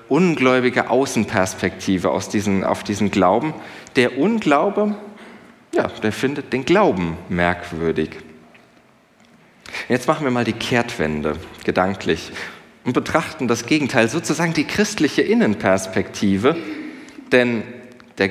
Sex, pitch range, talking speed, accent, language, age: male, 100-150 Hz, 105 wpm, German, German, 40-59